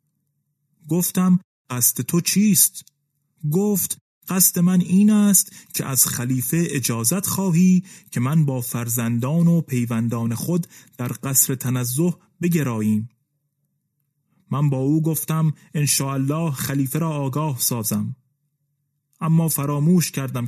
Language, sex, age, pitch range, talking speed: Persian, male, 30-49, 140-180 Hz, 110 wpm